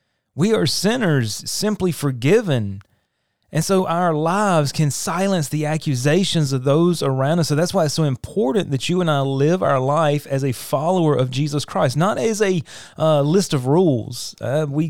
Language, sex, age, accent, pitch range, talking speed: English, male, 30-49, American, 135-180 Hz, 180 wpm